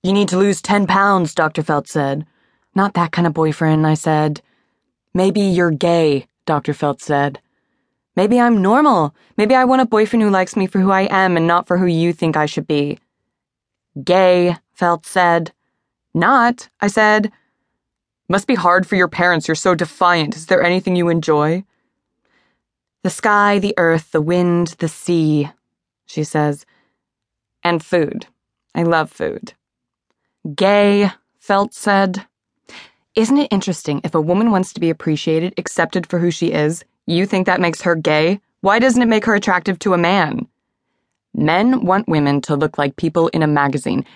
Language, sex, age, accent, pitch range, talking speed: English, female, 20-39, American, 160-200 Hz, 170 wpm